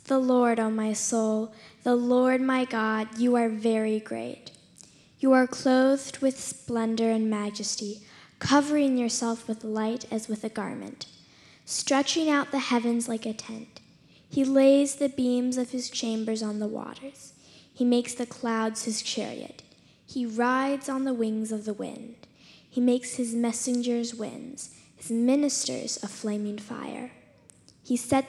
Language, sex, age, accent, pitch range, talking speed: English, female, 10-29, American, 220-255 Hz, 150 wpm